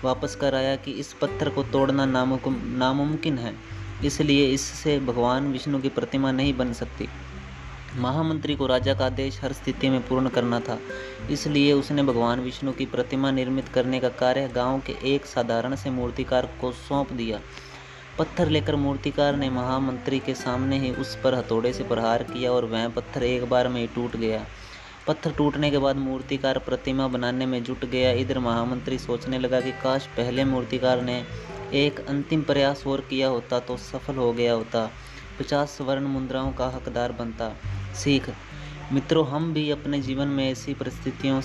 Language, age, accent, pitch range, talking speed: Hindi, 20-39, native, 125-135 Hz, 170 wpm